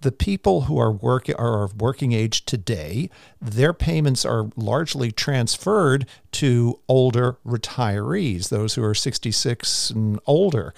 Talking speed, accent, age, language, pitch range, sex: 135 wpm, American, 50-69, English, 115-150 Hz, male